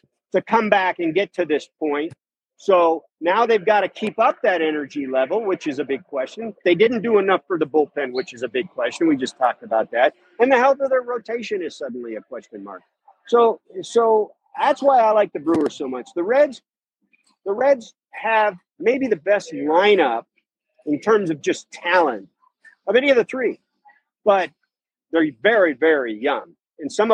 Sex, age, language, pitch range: male, 50-69, English, 170-245 Hz